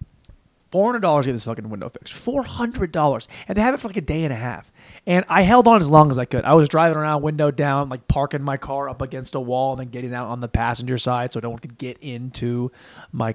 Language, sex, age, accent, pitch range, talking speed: English, male, 30-49, American, 120-165 Hz, 275 wpm